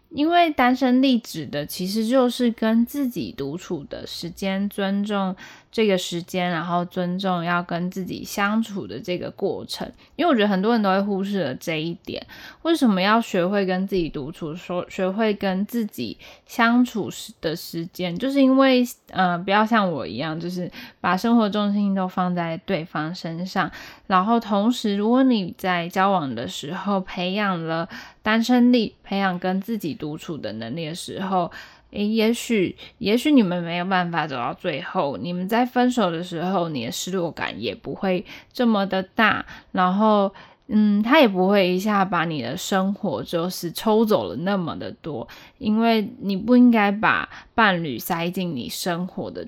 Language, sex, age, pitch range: Chinese, female, 10-29, 180-225 Hz